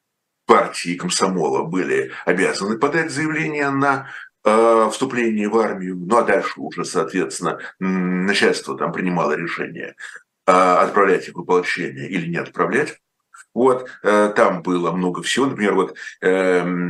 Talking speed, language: 130 wpm, Russian